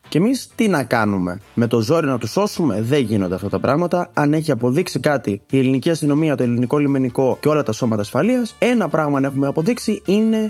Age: 20-39